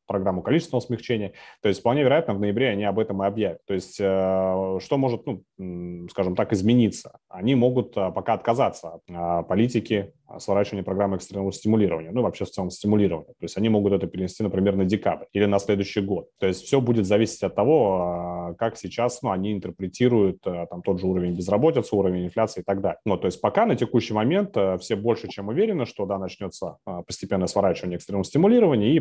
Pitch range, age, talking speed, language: 95-105 Hz, 30-49, 190 wpm, Russian